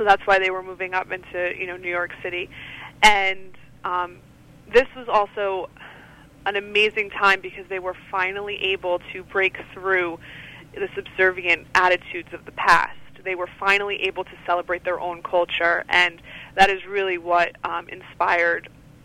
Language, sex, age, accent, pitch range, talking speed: English, female, 20-39, American, 170-190 Hz, 160 wpm